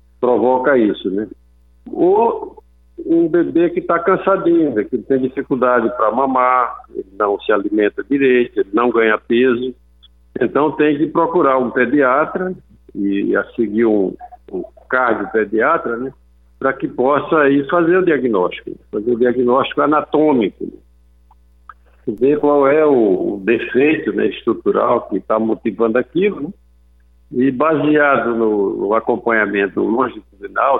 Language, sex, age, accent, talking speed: Portuguese, male, 60-79, Brazilian, 140 wpm